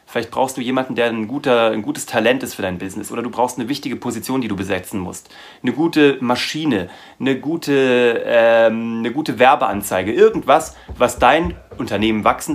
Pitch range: 110-160 Hz